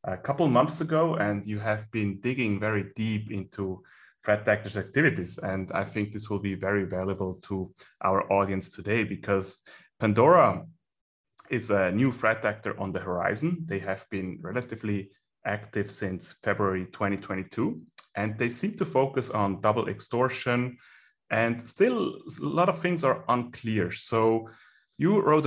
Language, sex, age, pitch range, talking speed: English, male, 30-49, 100-125 Hz, 150 wpm